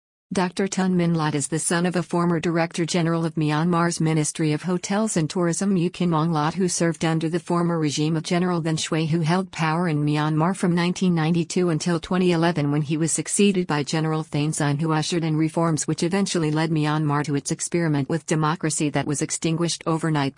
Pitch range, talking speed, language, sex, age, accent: 150-170 Hz, 195 wpm, English, female, 50-69, American